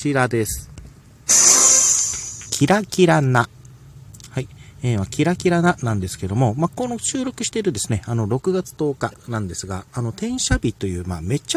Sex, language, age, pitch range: male, Japanese, 40-59, 105-140 Hz